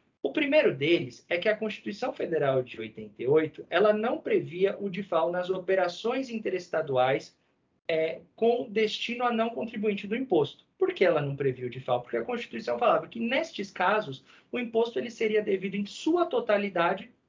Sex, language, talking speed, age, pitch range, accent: male, Portuguese, 165 wpm, 40-59, 150-210 Hz, Brazilian